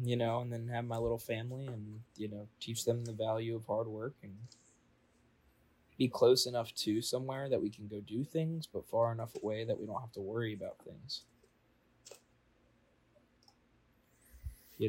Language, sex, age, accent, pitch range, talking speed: English, male, 20-39, American, 105-120 Hz, 175 wpm